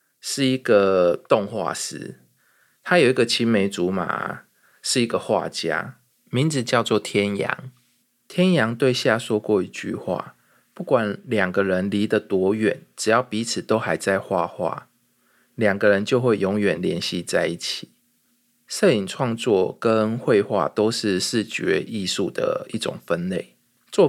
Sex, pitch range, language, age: male, 100-130 Hz, Chinese, 20-39